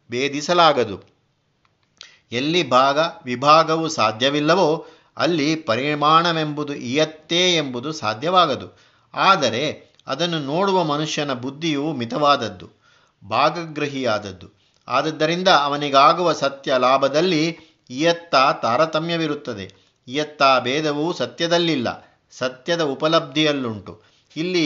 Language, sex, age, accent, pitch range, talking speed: Kannada, male, 50-69, native, 135-160 Hz, 70 wpm